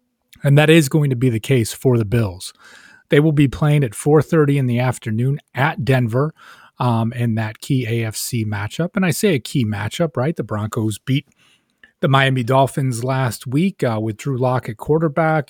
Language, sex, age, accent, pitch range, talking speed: English, male, 30-49, American, 115-140 Hz, 185 wpm